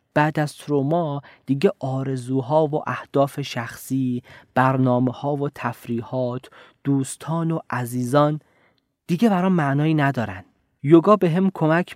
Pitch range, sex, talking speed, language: 115-150 Hz, male, 115 wpm, Persian